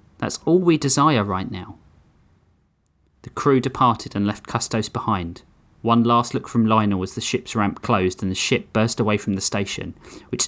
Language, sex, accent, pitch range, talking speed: English, male, British, 95-125 Hz, 185 wpm